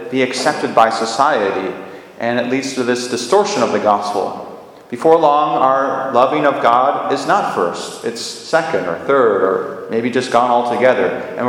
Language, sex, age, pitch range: English, male, 30-49, 115-140 Hz